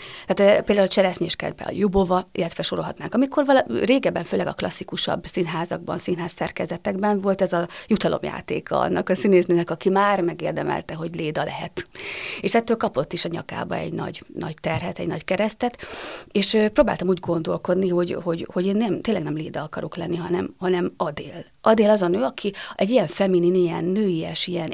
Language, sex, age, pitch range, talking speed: Hungarian, female, 30-49, 170-205 Hz, 165 wpm